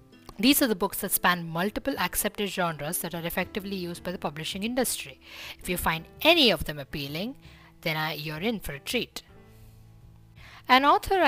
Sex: female